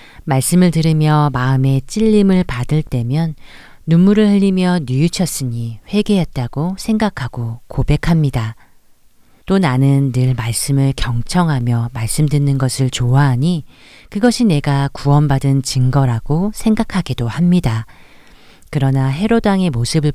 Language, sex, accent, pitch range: Korean, female, native, 125-165 Hz